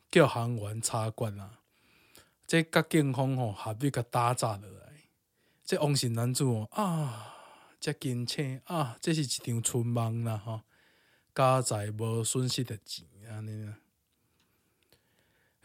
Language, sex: Chinese, male